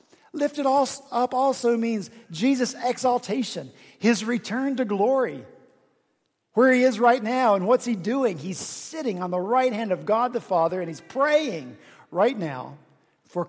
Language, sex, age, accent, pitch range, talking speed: English, male, 50-69, American, 155-230 Hz, 160 wpm